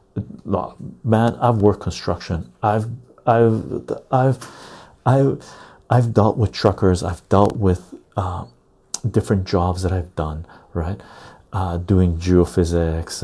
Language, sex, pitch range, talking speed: English, male, 90-120 Hz, 115 wpm